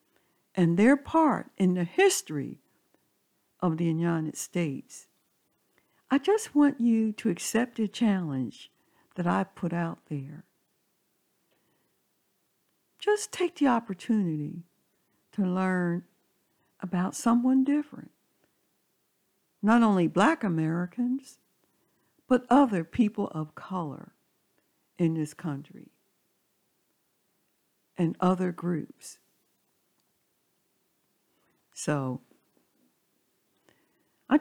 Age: 60-79